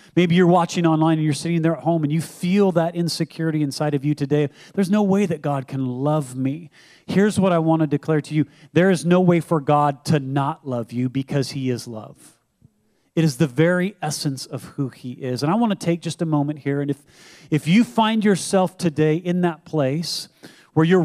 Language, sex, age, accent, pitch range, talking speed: English, male, 40-59, American, 145-175 Hz, 225 wpm